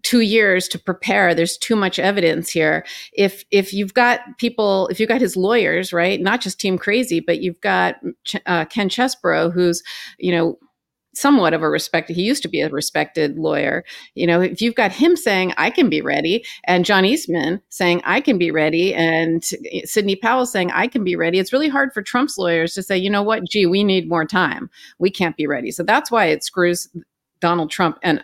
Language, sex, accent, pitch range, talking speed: English, female, American, 170-220 Hz, 215 wpm